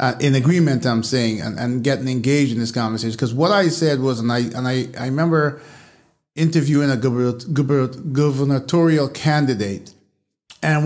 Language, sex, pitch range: English, male, 130-165 Hz